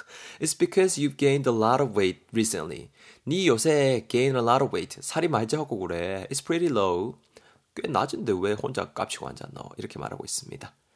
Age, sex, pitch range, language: 20-39, male, 105-145 Hz, Korean